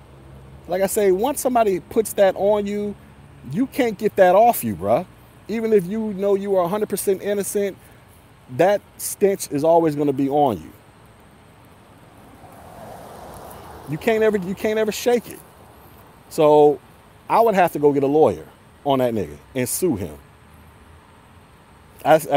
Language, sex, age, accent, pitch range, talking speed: English, male, 30-49, American, 125-205 Hz, 155 wpm